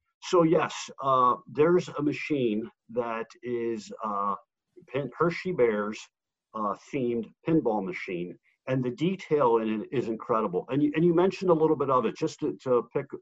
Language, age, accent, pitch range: English, 50-69, American, 115-150 Hz